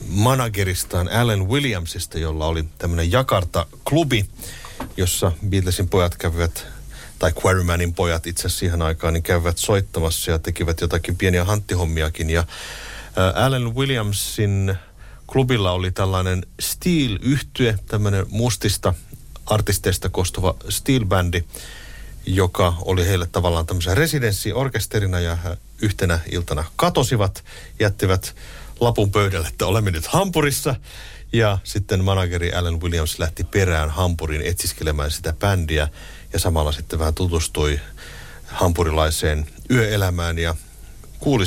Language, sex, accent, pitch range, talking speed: Finnish, male, native, 85-110 Hz, 110 wpm